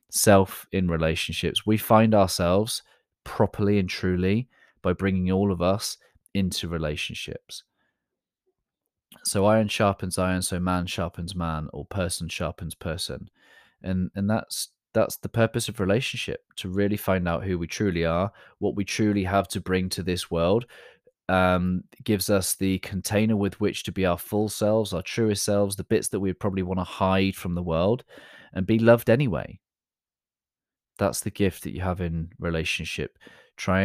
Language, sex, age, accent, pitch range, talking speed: English, male, 20-39, British, 90-105 Hz, 165 wpm